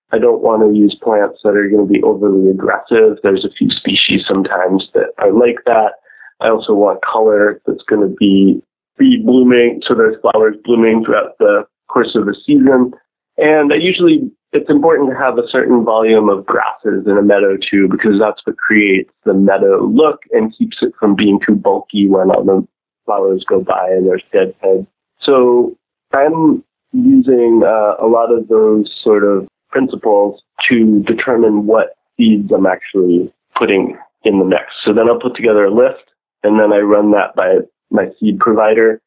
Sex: male